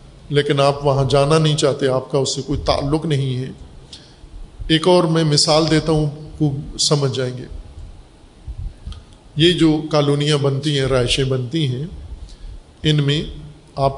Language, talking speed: Urdu, 150 wpm